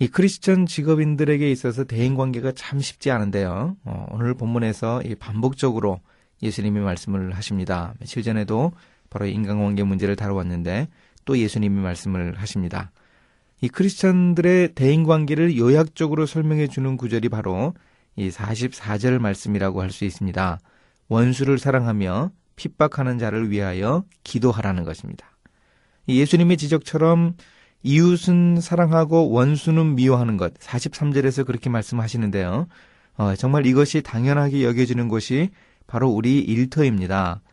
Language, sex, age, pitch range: Korean, male, 30-49, 100-145 Hz